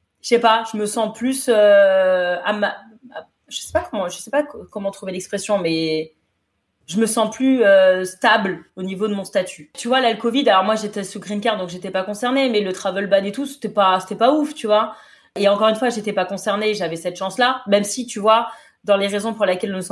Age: 30-49